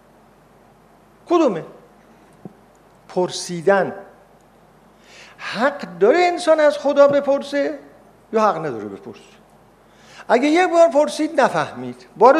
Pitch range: 200-315 Hz